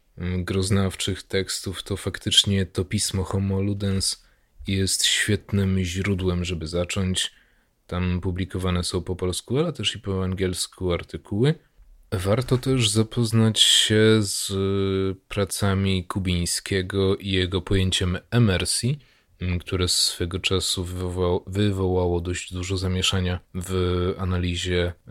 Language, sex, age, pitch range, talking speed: Polish, male, 30-49, 90-105 Hz, 110 wpm